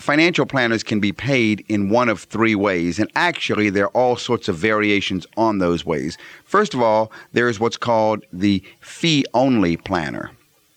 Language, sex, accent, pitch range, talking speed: English, male, American, 95-120 Hz, 175 wpm